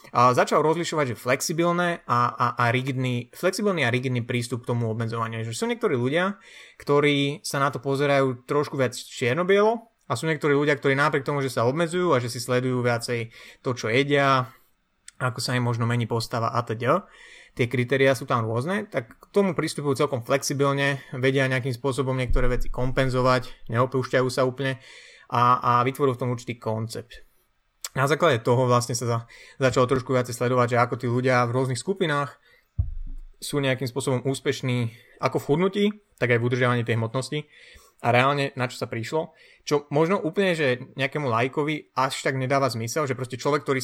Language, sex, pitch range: Slovak, male, 125-140 Hz